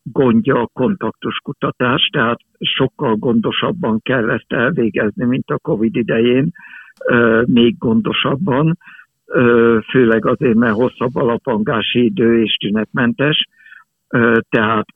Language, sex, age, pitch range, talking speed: Hungarian, male, 60-79, 115-145 Hz, 100 wpm